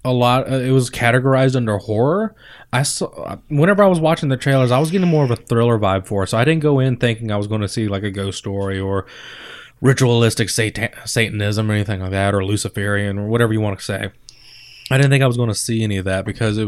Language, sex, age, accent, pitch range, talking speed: English, male, 20-39, American, 100-125 Hz, 250 wpm